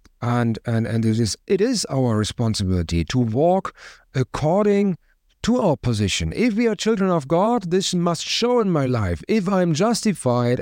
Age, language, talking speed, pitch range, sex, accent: 50-69, English, 175 wpm, 110-155 Hz, male, German